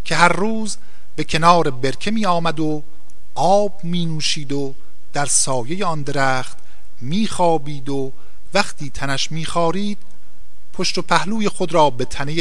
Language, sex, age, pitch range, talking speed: Persian, male, 50-69, 140-195 Hz, 145 wpm